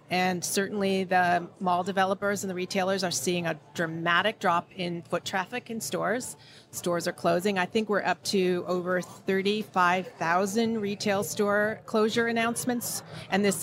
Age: 30-49